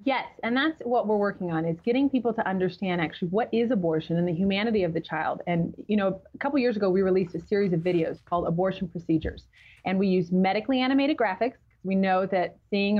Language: English